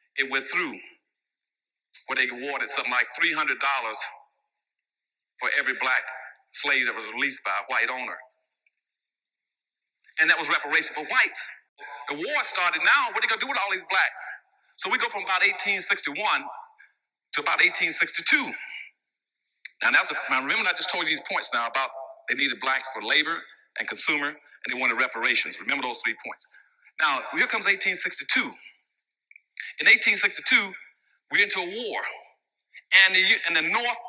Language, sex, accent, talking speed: English, male, American, 160 wpm